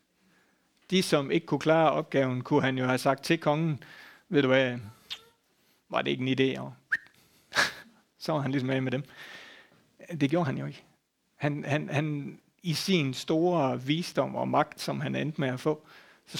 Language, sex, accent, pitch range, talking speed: Danish, male, native, 130-165 Hz, 180 wpm